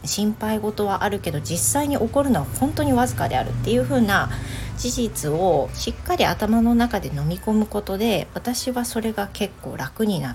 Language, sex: Japanese, female